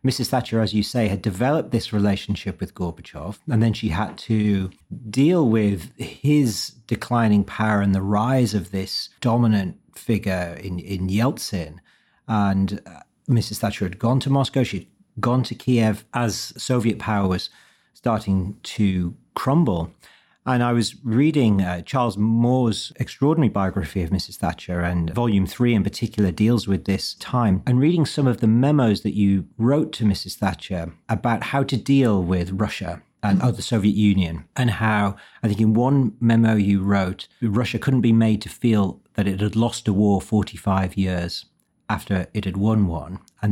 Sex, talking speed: male, 165 wpm